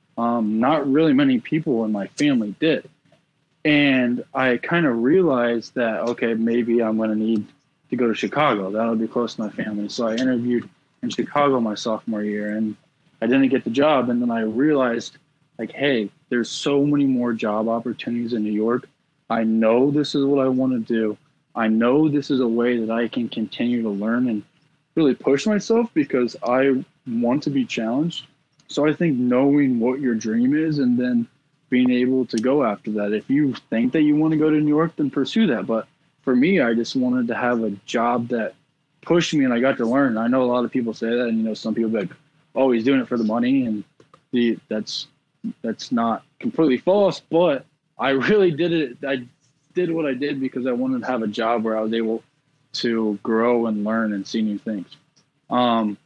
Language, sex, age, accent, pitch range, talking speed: English, male, 20-39, American, 115-150 Hz, 210 wpm